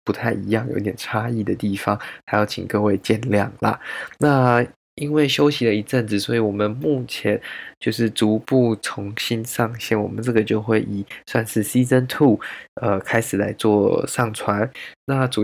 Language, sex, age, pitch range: Chinese, male, 20-39, 105-120 Hz